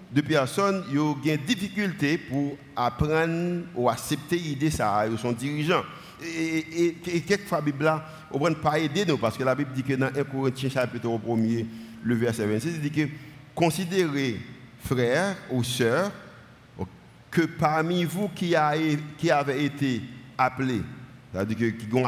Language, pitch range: French, 125-160 Hz